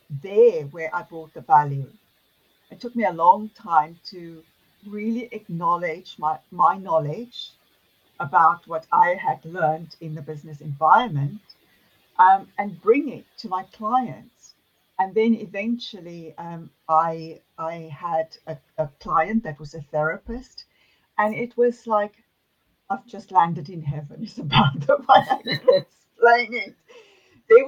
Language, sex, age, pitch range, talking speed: English, female, 60-79, 155-215 Hz, 140 wpm